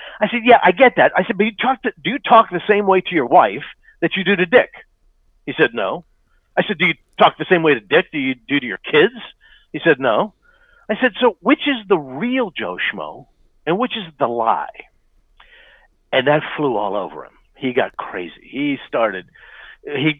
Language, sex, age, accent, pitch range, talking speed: English, male, 50-69, American, 160-245 Hz, 220 wpm